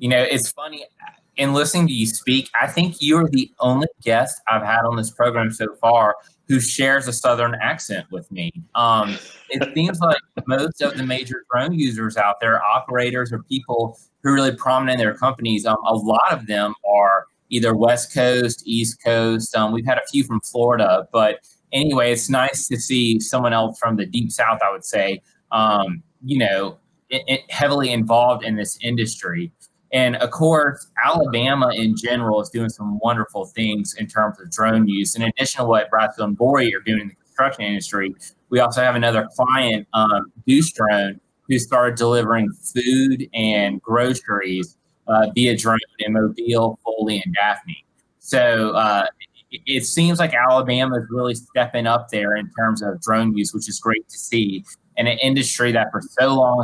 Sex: male